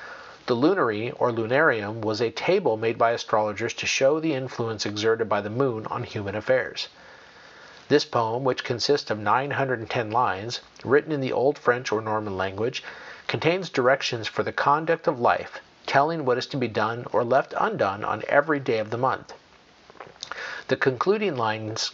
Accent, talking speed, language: American, 165 wpm, English